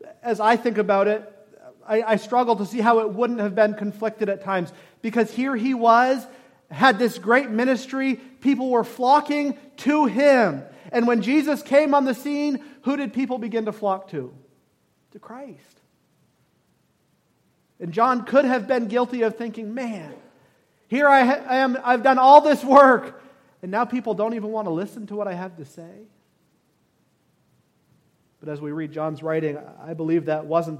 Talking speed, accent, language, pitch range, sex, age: 175 wpm, American, English, 165-235 Hz, male, 40-59